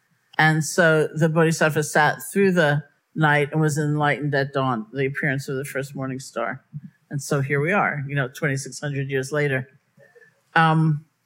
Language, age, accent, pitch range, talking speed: English, 50-69, American, 140-170 Hz, 165 wpm